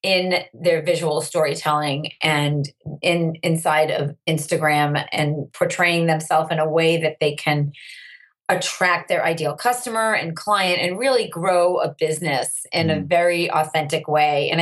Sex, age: female, 30-49